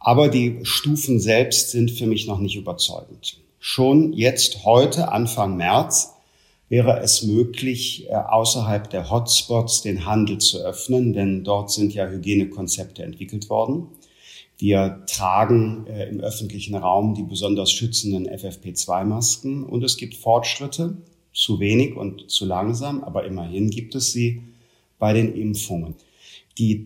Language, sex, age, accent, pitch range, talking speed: German, male, 50-69, German, 105-120 Hz, 130 wpm